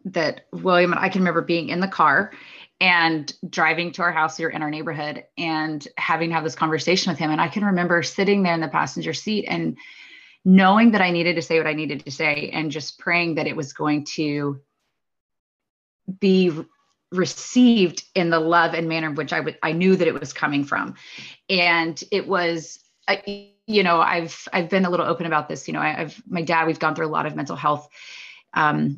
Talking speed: 215 wpm